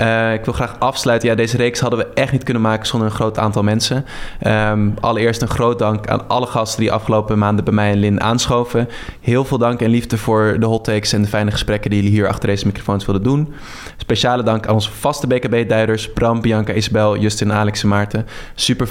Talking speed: 225 wpm